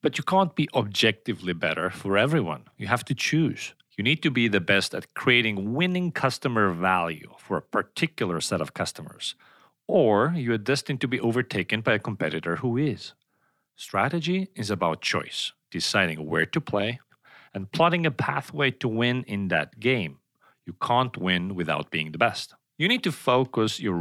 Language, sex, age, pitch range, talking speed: English, male, 40-59, 90-135 Hz, 175 wpm